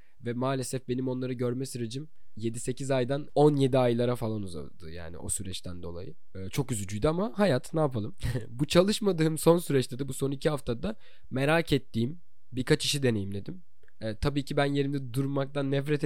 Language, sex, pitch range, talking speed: Turkish, male, 110-150 Hz, 165 wpm